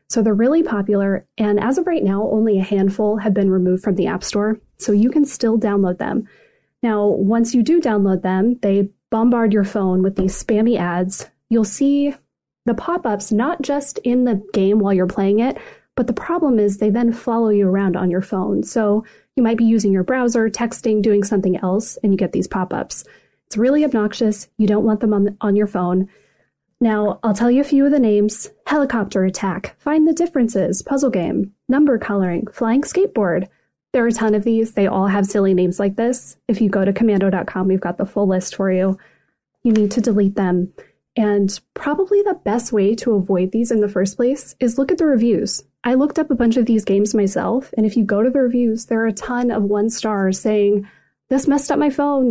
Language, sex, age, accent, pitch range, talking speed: English, female, 30-49, American, 200-245 Hz, 215 wpm